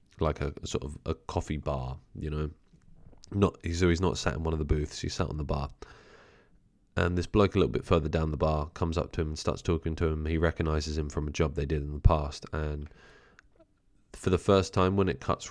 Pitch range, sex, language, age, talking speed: 75-90 Hz, male, English, 20-39, 240 wpm